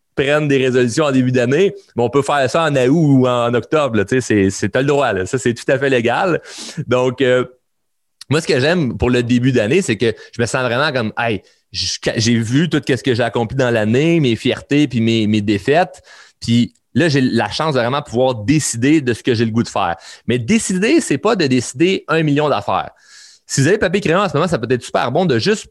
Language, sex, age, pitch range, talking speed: French, male, 30-49, 120-150 Hz, 245 wpm